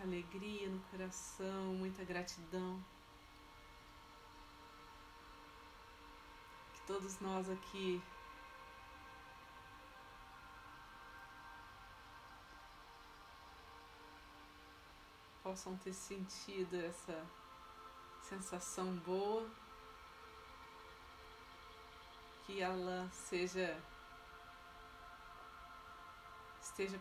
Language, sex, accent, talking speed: Portuguese, female, Brazilian, 40 wpm